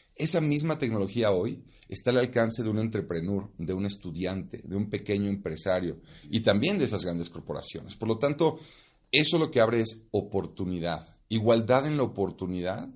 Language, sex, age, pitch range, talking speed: Spanish, male, 40-59, 90-115 Hz, 165 wpm